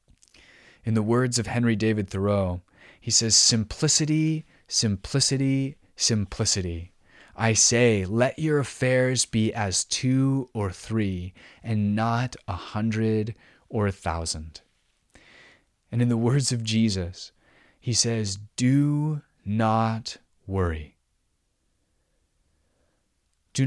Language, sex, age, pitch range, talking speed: English, male, 30-49, 95-125 Hz, 105 wpm